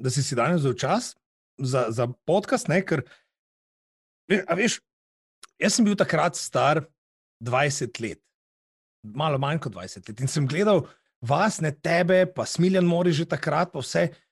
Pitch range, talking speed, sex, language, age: 145-200 Hz, 150 wpm, male, English, 30-49